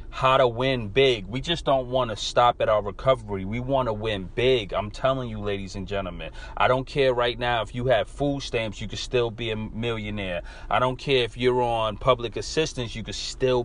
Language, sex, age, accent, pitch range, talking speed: English, male, 30-49, American, 105-125 Hz, 225 wpm